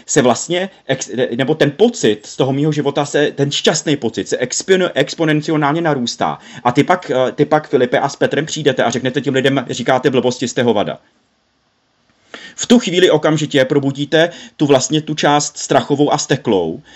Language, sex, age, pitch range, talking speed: Czech, male, 30-49, 120-145 Hz, 170 wpm